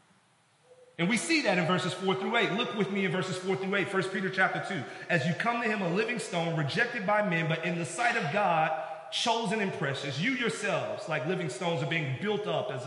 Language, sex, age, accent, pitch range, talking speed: English, male, 30-49, American, 165-220 Hz, 240 wpm